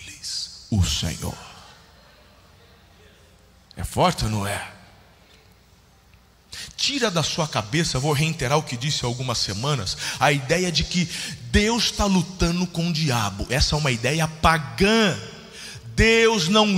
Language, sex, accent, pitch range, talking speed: Portuguese, male, Brazilian, 135-230 Hz, 130 wpm